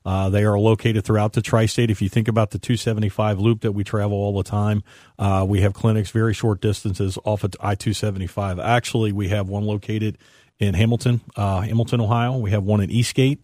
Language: English